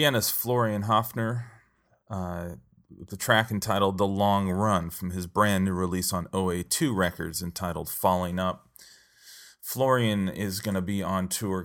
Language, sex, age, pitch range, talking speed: English, male, 30-49, 90-105 Hz, 155 wpm